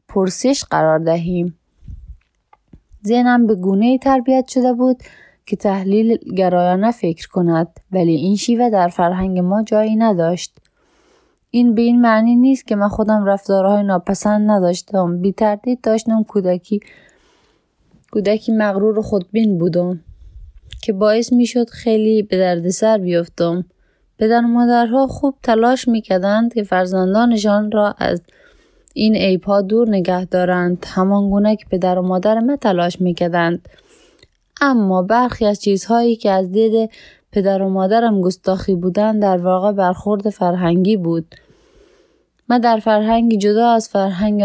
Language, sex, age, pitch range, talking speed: Persian, female, 20-39, 185-225 Hz, 130 wpm